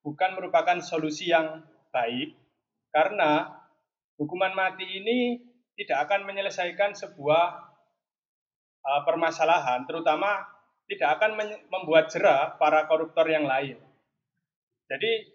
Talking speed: 100 wpm